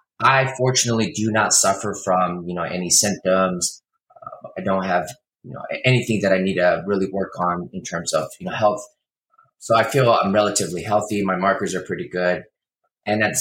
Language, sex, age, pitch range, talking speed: English, male, 20-39, 90-105 Hz, 195 wpm